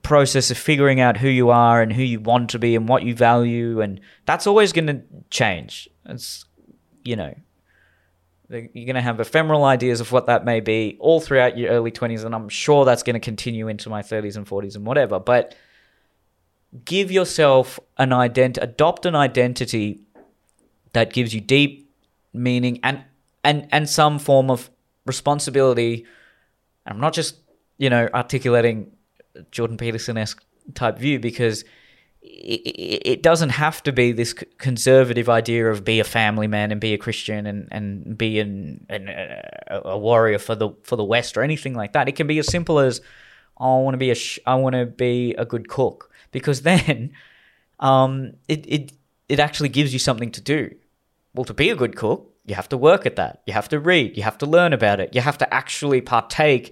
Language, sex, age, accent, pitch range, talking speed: English, male, 20-39, Australian, 115-140 Hz, 190 wpm